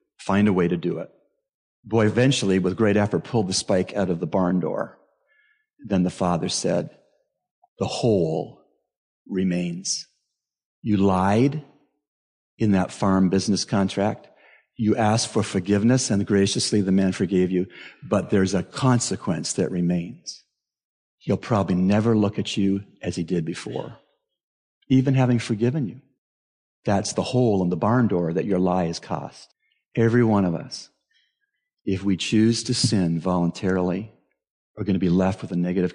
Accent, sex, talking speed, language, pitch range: American, male, 155 wpm, English, 95-145 Hz